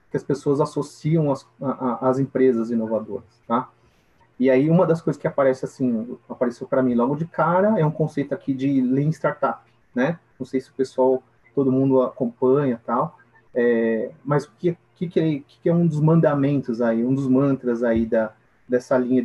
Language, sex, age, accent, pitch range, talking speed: Portuguese, male, 30-49, Brazilian, 125-160 Hz, 180 wpm